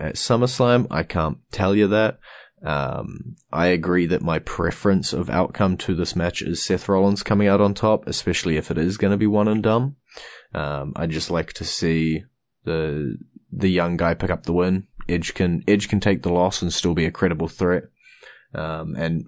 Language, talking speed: English, 195 wpm